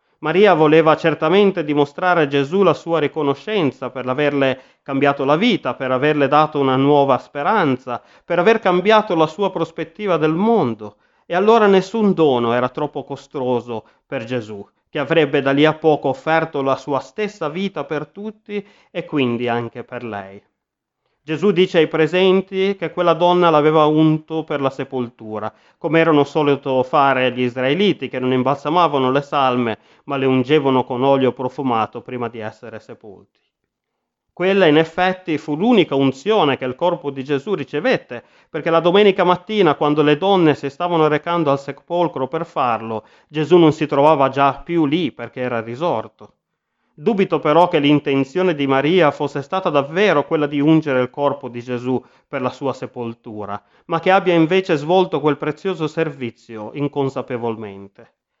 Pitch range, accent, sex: 130-165 Hz, native, male